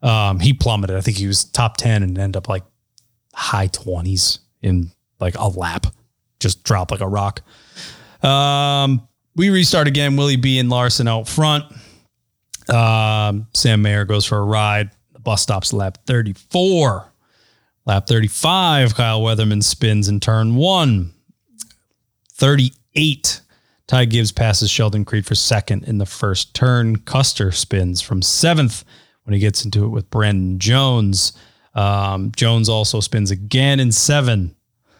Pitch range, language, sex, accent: 100-125 Hz, English, male, American